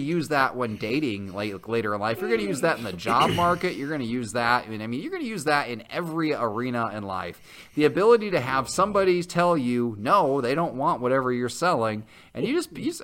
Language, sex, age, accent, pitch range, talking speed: English, male, 30-49, American, 115-180 Hz, 235 wpm